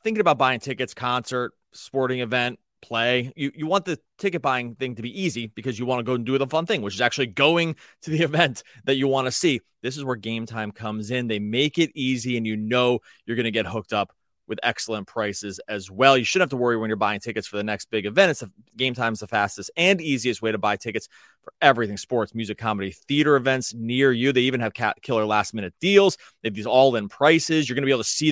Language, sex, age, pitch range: English, male, 30-49, 115-145 Hz